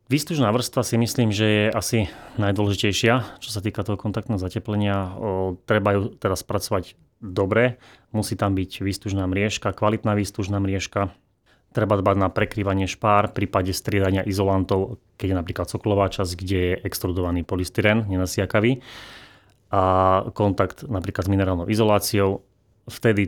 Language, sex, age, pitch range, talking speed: Slovak, male, 30-49, 95-110 Hz, 135 wpm